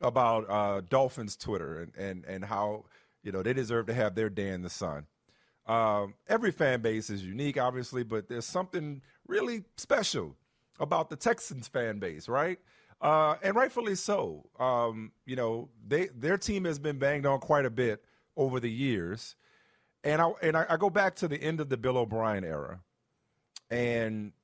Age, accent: 40-59, American